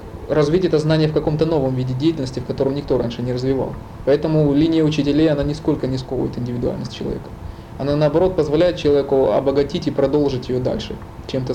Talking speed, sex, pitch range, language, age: 170 wpm, male, 125-155 Hz, Russian, 20-39